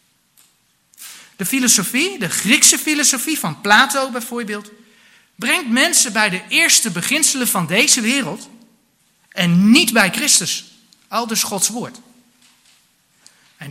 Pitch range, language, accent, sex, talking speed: 195-260 Hz, Dutch, Dutch, male, 115 wpm